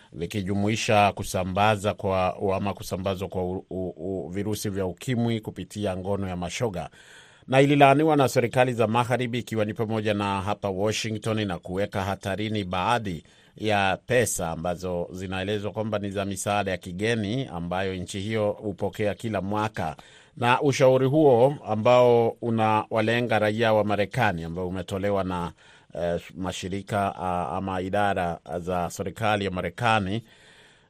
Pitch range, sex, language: 95-115 Hz, male, Swahili